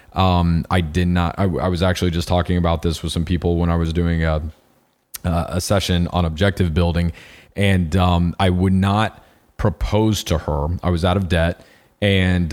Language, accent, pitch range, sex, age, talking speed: English, American, 85-95 Hz, male, 30-49, 185 wpm